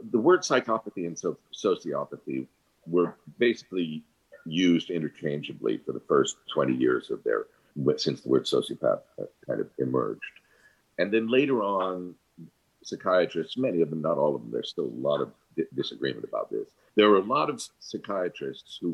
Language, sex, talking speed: English, male, 160 wpm